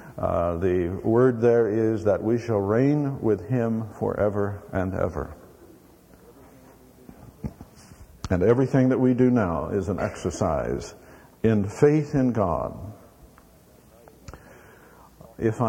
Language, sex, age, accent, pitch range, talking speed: English, male, 50-69, American, 90-120 Hz, 105 wpm